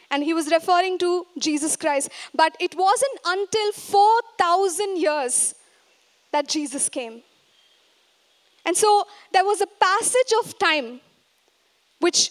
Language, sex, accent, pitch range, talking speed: English, female, Indian, 295-395 Hz, 120 wpm